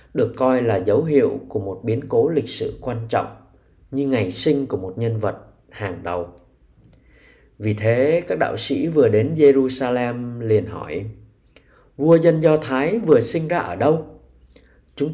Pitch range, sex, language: 105-145 Hz, male, Vietnamese